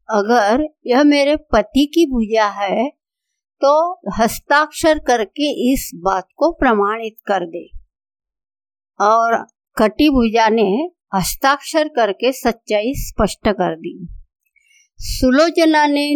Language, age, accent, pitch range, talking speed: Hindi, 50-69, native, 210-285 Hz, 105 wpm